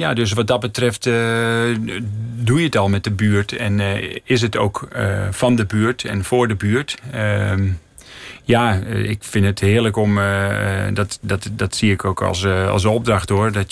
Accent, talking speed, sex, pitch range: Dutch, 200 wpm, male, 95-110 Hz